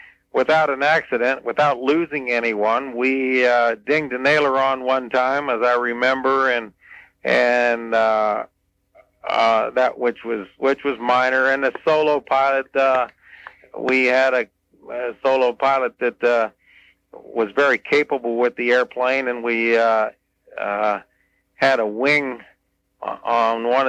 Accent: American